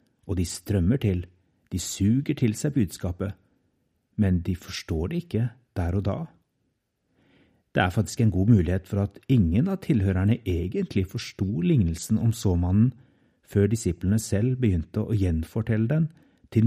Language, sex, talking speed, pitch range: English, male, 150 wpm, 95-125 Hz